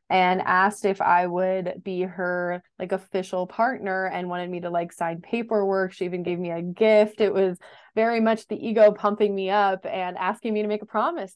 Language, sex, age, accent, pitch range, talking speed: English, female, 20-39, American, 185-225 Hz, 205 wpm